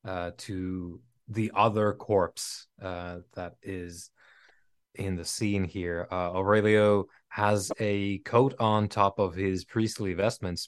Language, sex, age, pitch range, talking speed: English, male, 20-39, 95-115 Hz, 130 wpm